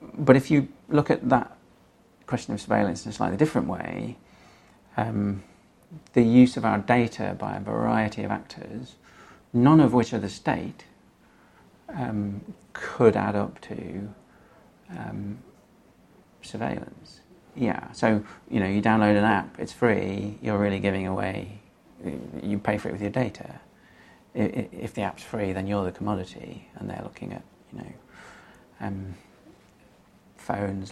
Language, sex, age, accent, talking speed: English, male, 40-59, British, 145 wpm